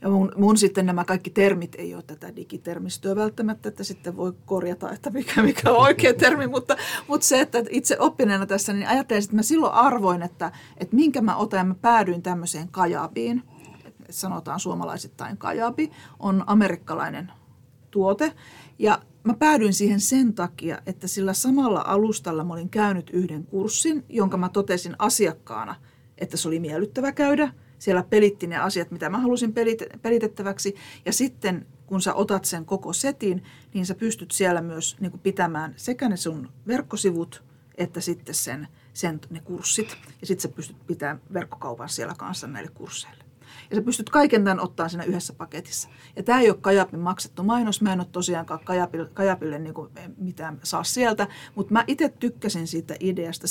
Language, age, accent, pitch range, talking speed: Finnish, 40-59, native, 165-215 Hz, 170 wpm